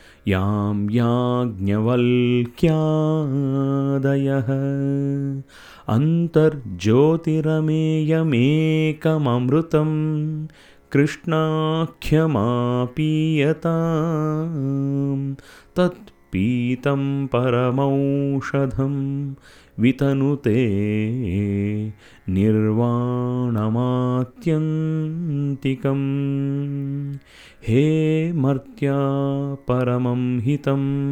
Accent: native